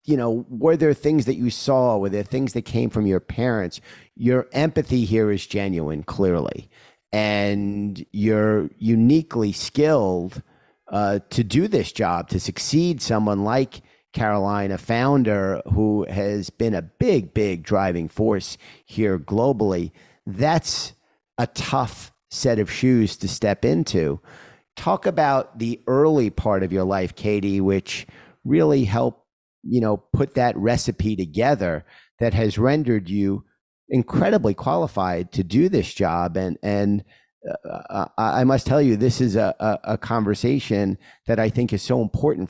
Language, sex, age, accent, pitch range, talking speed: English, male, 50-69, American, 95-120 Hz, 145 wpm